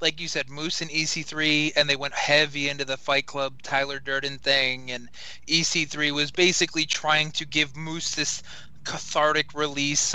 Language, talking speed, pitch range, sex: English, 165 wpm, 140-165 Hz, male